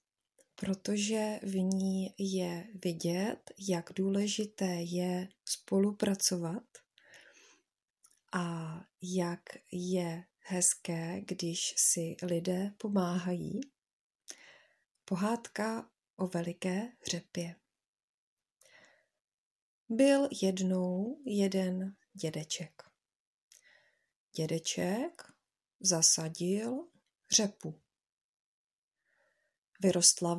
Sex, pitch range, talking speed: female, 175-215 Hz, 55 wpm